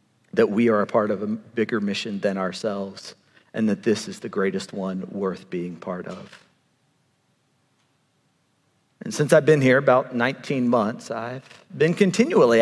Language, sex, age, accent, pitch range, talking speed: English, male, 40-59, American, 115-145 Hz, 155 wpm